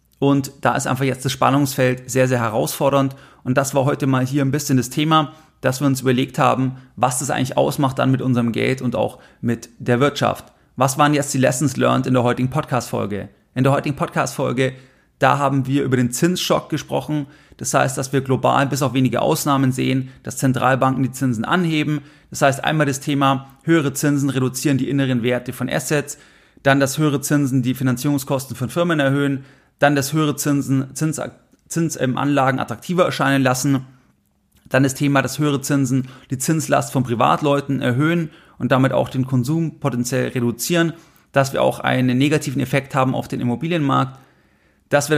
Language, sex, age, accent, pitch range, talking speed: German, male, 30-49, German, 130-145 Hz, 180 wpm